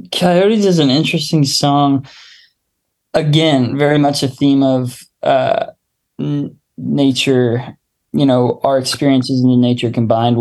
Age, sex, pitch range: 20-39, male, 125-145 Hz